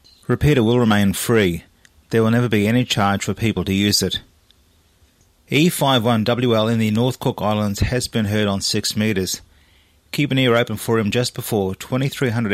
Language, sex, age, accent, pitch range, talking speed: English, male, 30-49, Australian, 95-120 Hz, 175 wpm